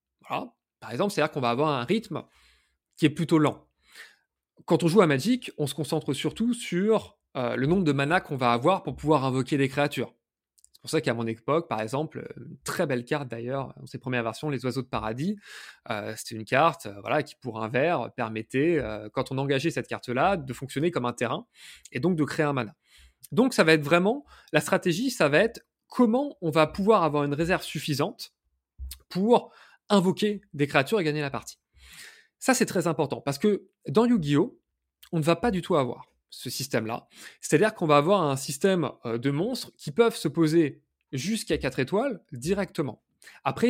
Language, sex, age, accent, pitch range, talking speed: French, male, 20-39, French, 130-200 Hz, 200 wpm